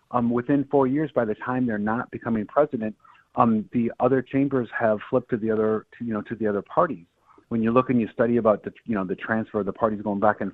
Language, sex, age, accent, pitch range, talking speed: English, male, 40-59, American, 105-135 Hz, 250 wpm